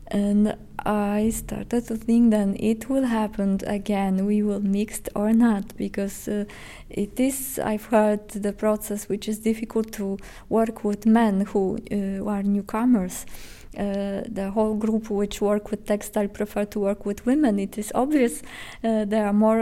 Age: 20-39